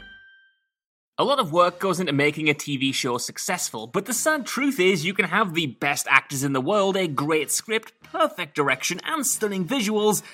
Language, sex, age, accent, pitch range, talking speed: English, male, 20-39, British, 145-200 Hz, 190 wpm